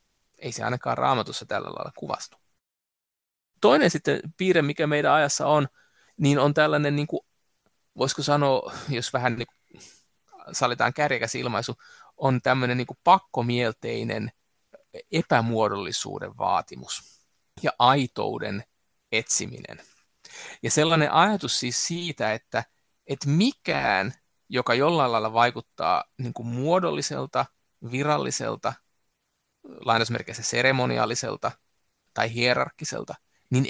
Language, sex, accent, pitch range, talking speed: Finnish, male, native, 120-150 Hz, 105 wpm